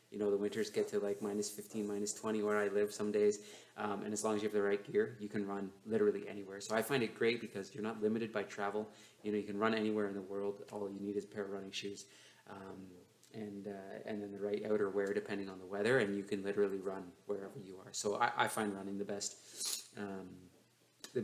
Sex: male